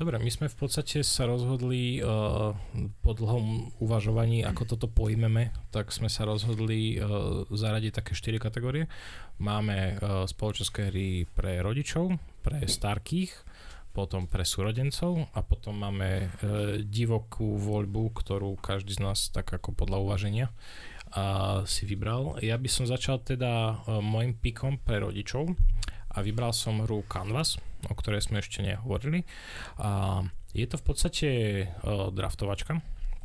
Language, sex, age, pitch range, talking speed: Slovak, male, 20-39, 100-115 Hz, 140 wpm